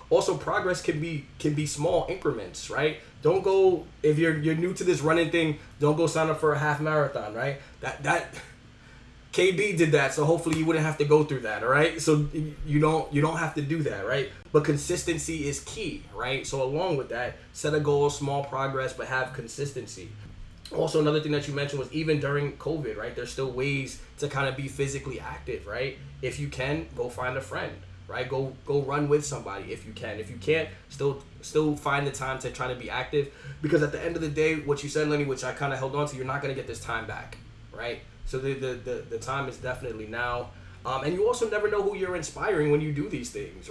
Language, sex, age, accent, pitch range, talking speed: English, male, 20-39, American, 125-155 Hz, 235 wpm